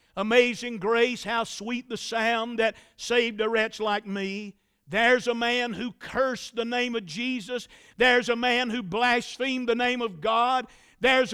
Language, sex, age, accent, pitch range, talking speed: English, male, 50-69, American, 225-255 Hz, 165 wpm